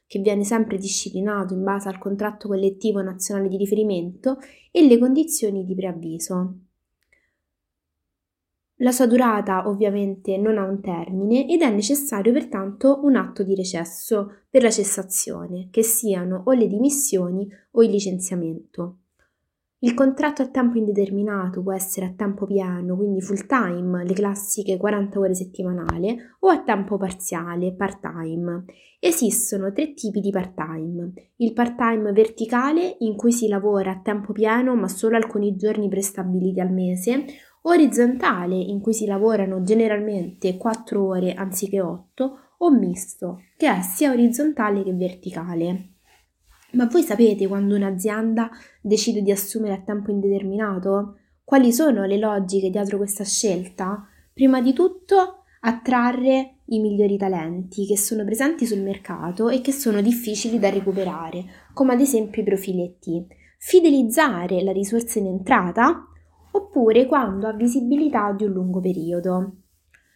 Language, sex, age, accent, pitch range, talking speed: Italian, female, 20-39, native, 190-235 Hz, 140 wpm